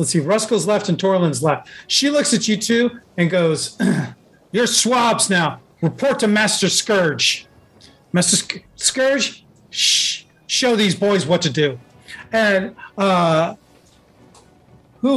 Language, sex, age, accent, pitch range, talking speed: English, male, 40-59, American, 130-210 Hz, 135 wpm